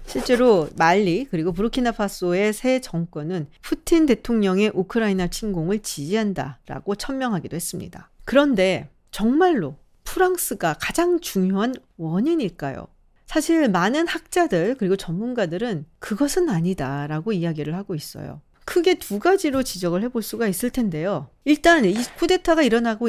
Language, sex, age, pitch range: Korean, female, 40-59, 175-265 Hz